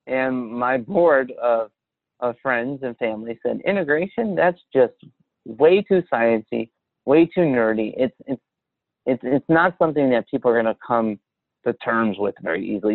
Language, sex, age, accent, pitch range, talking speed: English, male, 30-49, American, 120-170 Hz, 160 wpm